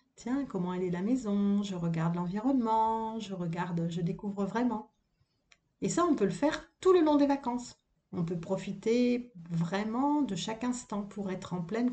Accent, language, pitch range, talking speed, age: French, French, 185-245 Hz, 175 wpm, 40-59